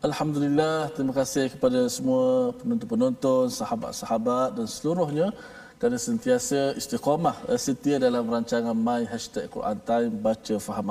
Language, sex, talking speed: Malayalam, male, 115 wpm